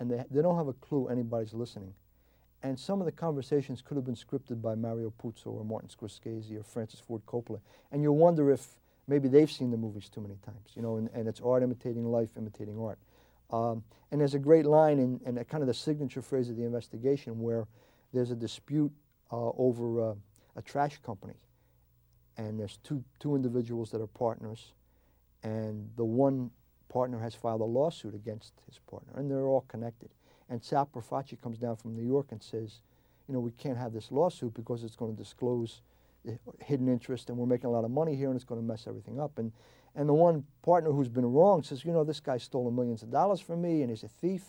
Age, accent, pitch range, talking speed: 50-69, American, 115-135 Hz, 220 wpm